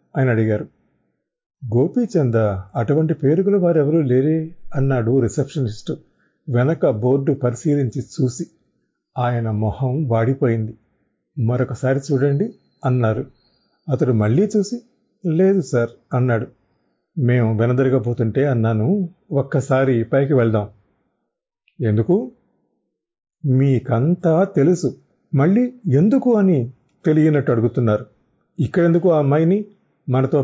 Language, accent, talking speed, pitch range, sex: Telugu, native, 85 wpm, 120-175 Hz, male